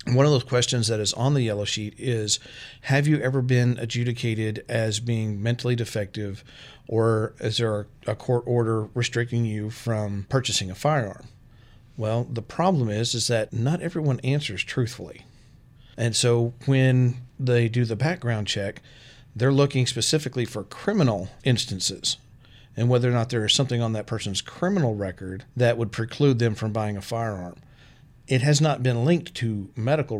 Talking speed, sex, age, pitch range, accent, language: 165 wpm, male, 40-59, 110-130 Hz, American, English